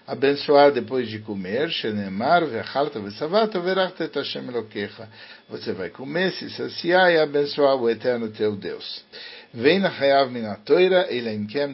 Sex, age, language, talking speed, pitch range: male, 60-79, English, 150 wpm, 115-165 Hz